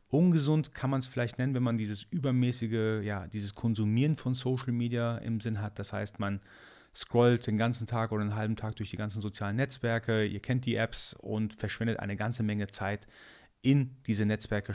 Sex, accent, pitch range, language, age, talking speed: male, German, 100-120 Hz, German, 30-49, 195 wpm